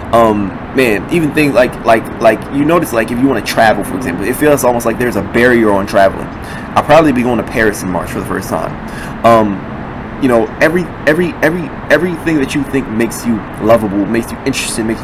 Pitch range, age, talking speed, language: 110-125 Hz, 20-39, 220 wpm, English